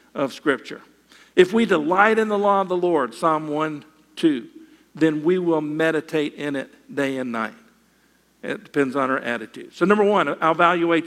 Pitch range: 155-195 Hz